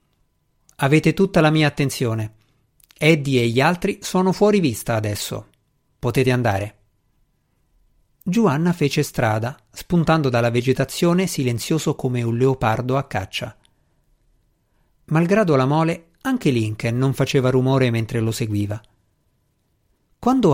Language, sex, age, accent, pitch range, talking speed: Italian, male, 50-69, native, 120-160 Hz, 115 wpm